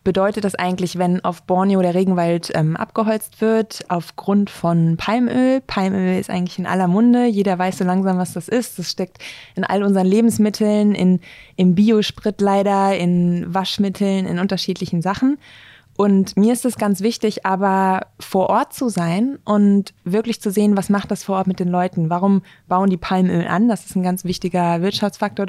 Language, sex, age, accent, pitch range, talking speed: German, female, 20-39, German, 175-205 Hz, 180 wpm